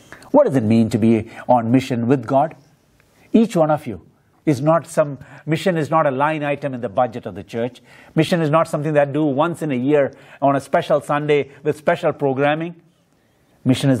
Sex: male